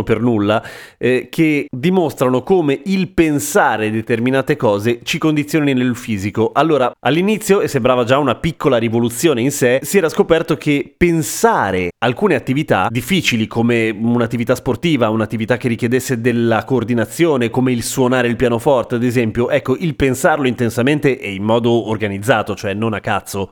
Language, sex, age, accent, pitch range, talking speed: Italian, male, 30-49, native, 120-160 Hz, 150 wpm